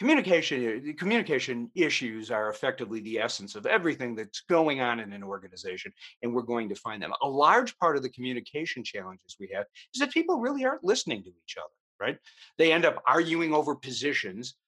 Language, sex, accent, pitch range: English, male, American, 110-165 Hz